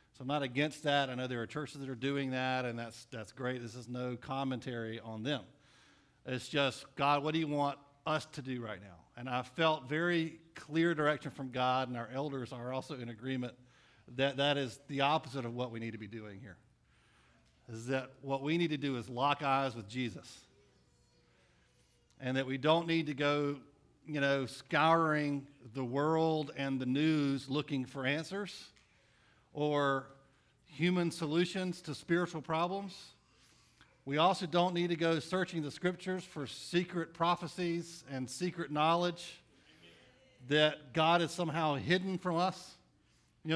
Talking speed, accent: 170 wpm, American